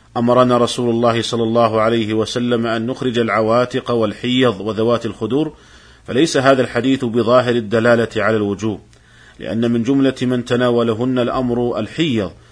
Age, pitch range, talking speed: 40-59, 115-125 Hz, 130 wpm